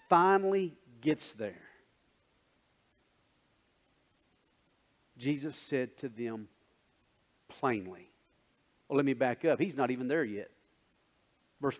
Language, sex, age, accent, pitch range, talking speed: English, male, 40-59, American, 140-215 Hz, 95 wpm